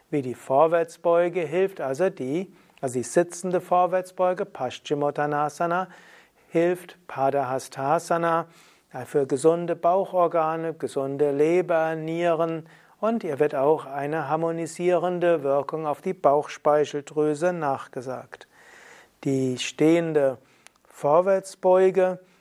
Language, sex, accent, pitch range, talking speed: German, male, German, 145-180 Hz, 90 wpm